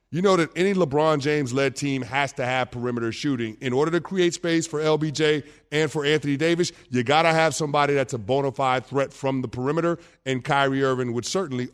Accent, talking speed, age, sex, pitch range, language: American, 210 wpm, 30-49, male, 145-190 Hz, English